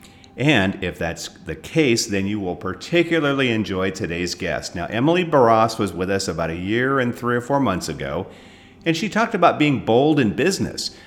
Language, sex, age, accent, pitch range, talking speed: English, male, 50-69, American, 95-145 Hz, 190 wpm